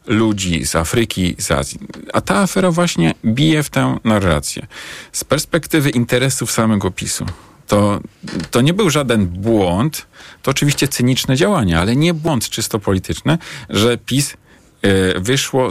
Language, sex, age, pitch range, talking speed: Polish, male, 40-59, 95-125 Hz, 140 wpm